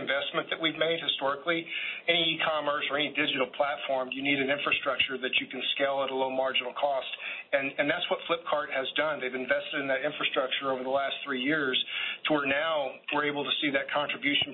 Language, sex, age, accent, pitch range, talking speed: English, male, 40-59, American, 130-145 Hz, 205 wpm